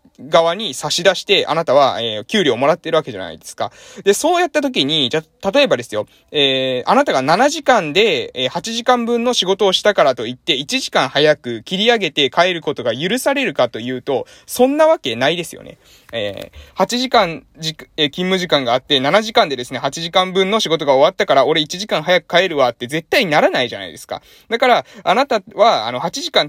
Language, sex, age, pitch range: Japanese, male, 20-39, 145-240 Hz